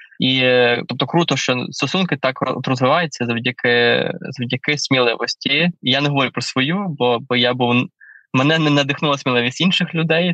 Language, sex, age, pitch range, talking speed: Ukrainian, male, 20-39, 130-150 Hz, 145 wpm